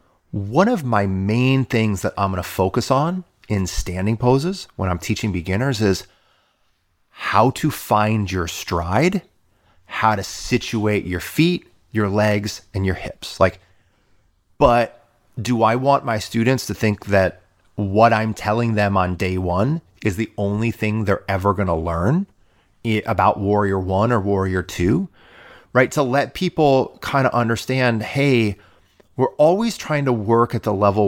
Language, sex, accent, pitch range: English, male, American, 95-125 Hz